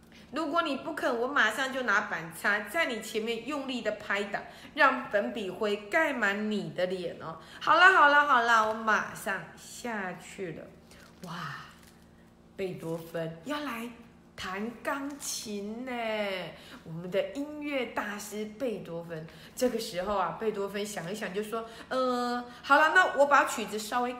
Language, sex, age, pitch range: Chinese, female, 20-39, 205-295 Hz